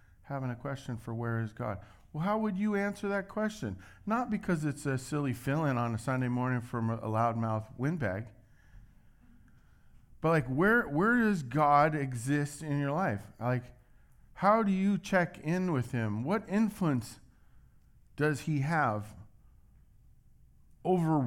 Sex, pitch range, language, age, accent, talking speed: male, 110-150 Hz, English, 50-69, American, 145 wpm